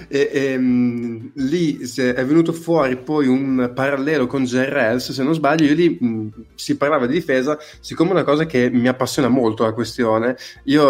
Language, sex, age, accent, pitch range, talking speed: Italian, male, 20-39, native, 120-140 Hz, 170 wpm